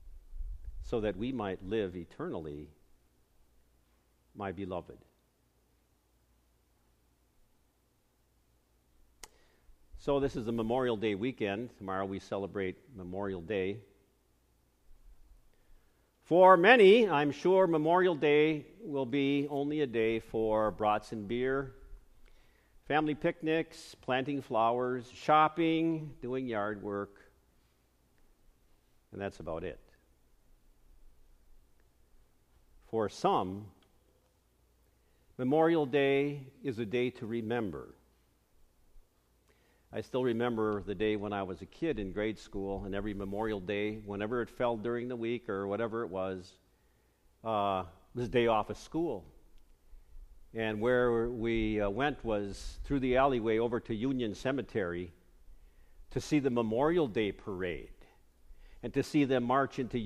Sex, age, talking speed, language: male, 50-69, 115 wpm, English